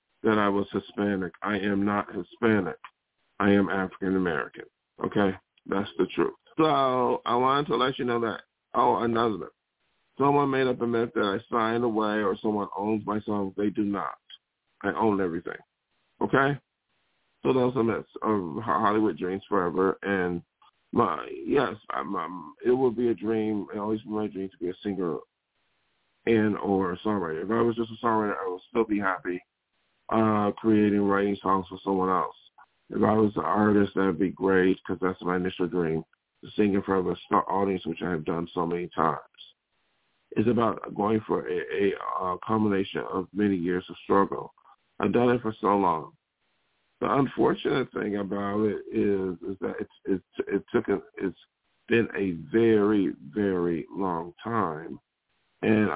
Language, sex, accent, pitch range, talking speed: English, male, American, 95-110 Hz, 175 wpm